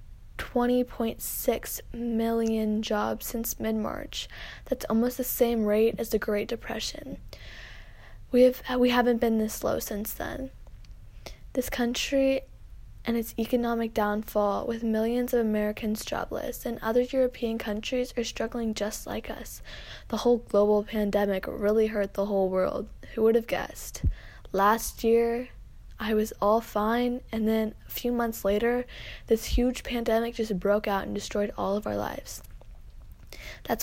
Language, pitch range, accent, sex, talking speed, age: English, 210-235 Hz, American, female, 145 wpm, 10-29